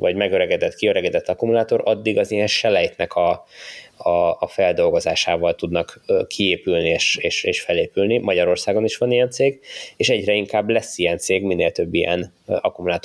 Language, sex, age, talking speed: Hungarian, male, 20-39, 145 wpm